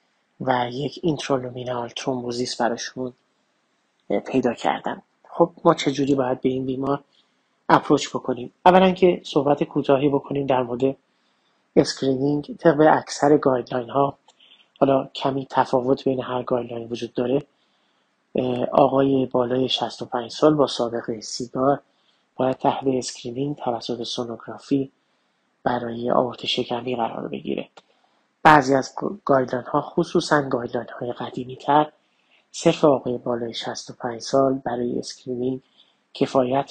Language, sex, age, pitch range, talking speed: Persian, male, 30-49, 125-140 Hz, 110 wpm